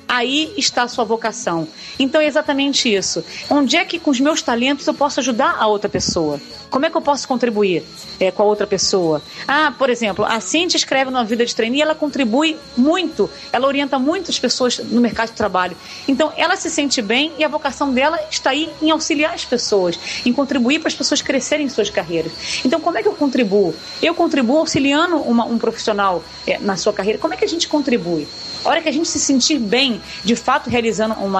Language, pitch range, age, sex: Portuguese, 215-300 Hz, 40-59, female